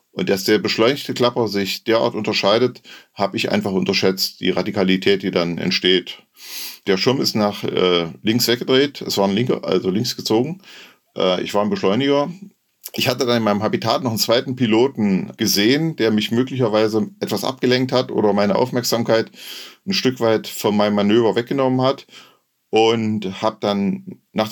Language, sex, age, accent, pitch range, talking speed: German, male, 40-59, German, 100-125 Hz, 165 wpm